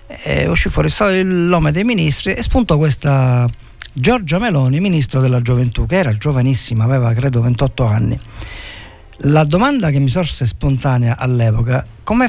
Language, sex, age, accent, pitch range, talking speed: Italian, male, 50-69, native, 125-165 Hz, 145 wpm